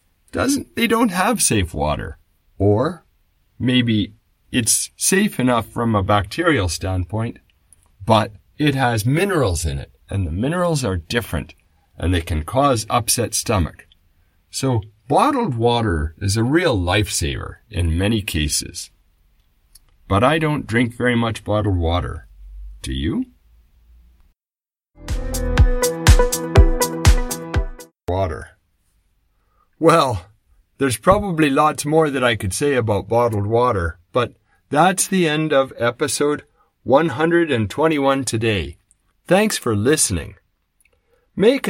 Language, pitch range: English, 85-135 Hz